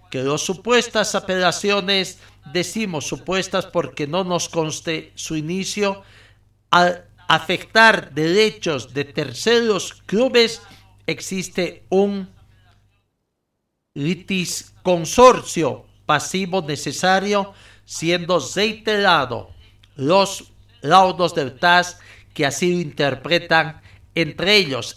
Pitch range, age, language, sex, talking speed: 130-180 Hz, 50-69, Spanish, male, 85 wpm